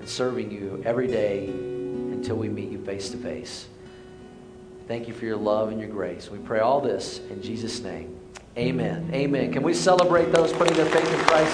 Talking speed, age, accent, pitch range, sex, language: 200 wpm, 40-59, American, 130-175 Hz, male, English